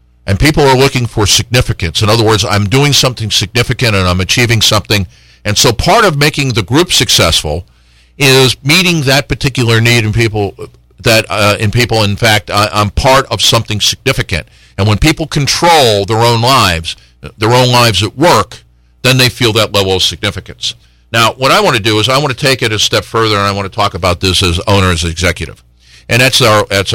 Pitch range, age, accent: 90-120 Hz, 50-69, American